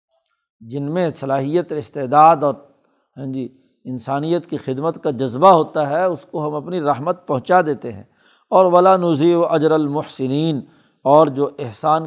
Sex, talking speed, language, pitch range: male, 155 wpm, Urdu, 140-175 Hz